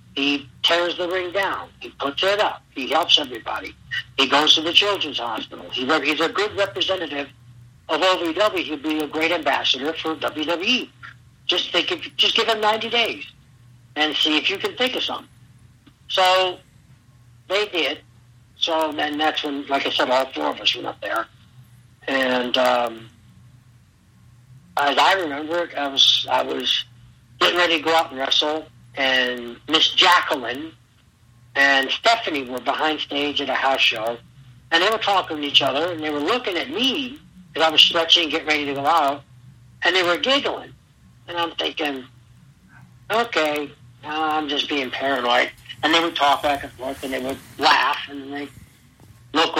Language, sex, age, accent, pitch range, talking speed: English, male, 60-79, American, 125-165 Hz, 175 wpm